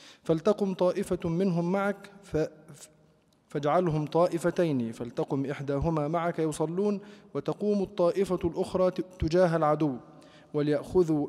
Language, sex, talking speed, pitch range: Arabic, male, 85 wpm, 150-190 Hz